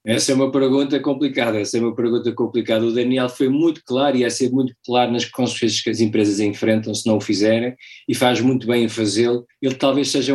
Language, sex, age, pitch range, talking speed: Portuguese, male, 20-39, 110-125 Hz, 225 wpm